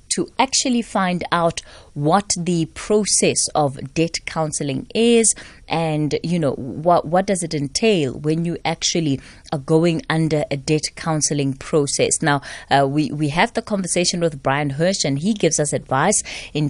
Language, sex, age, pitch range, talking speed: English, female, 20-39, 150-190 Hz, 160 wpm